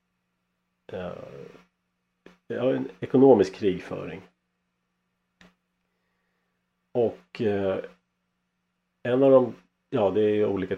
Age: 40-59